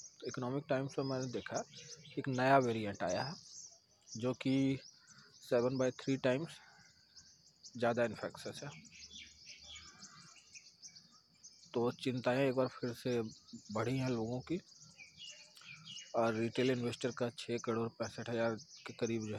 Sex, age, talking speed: male, 40-59, 125 wpm